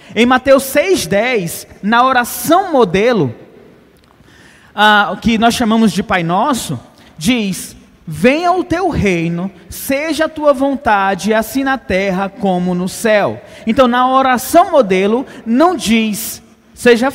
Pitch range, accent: 180-245 Hz, Brazilian